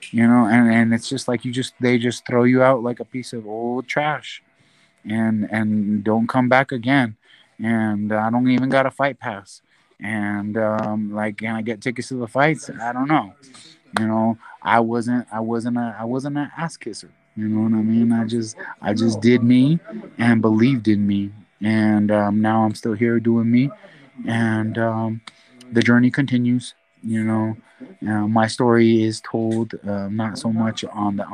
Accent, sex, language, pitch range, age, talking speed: American, male, English, 105-120 Hz, 20-39, 195 wpm